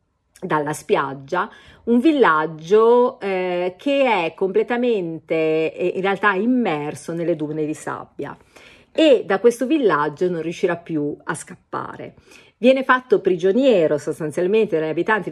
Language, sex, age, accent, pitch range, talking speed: Italian, female, 40-59, native, 160-200 Hz, 120 wpm